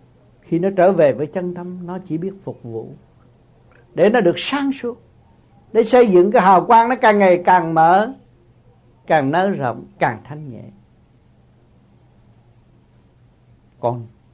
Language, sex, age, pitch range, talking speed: Vietnamese, male, 60-79, 130-200 Hz, 145 wpm